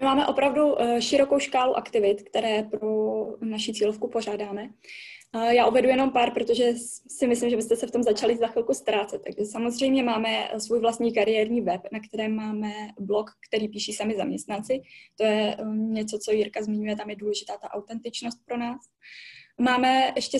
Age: 10-29